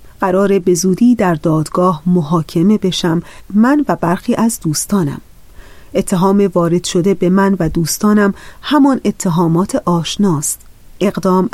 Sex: female